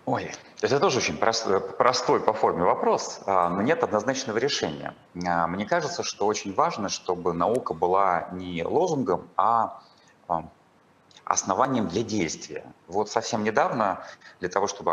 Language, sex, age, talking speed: Russian, male, 30-49, 135 wpm